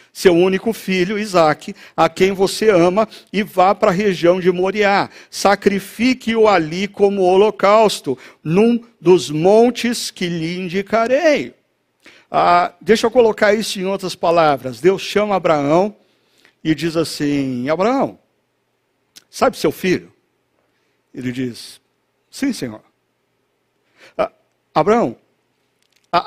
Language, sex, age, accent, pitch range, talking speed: Portuguese, male, 60-79, Brazilian, 145-205 Hz, 115 wpm